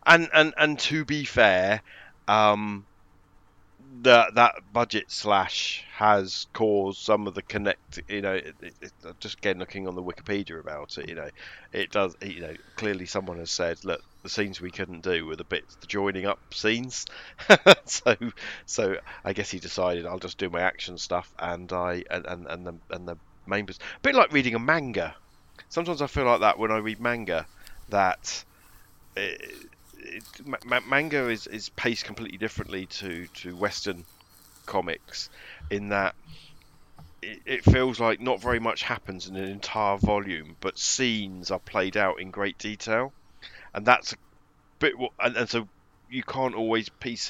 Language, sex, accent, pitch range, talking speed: English, male, British, 95-120 Hz, 175 wpm